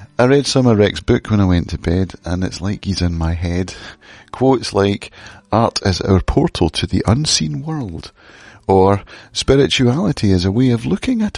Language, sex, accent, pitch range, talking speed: English, male, British, 95-120 Hz, 190 wpm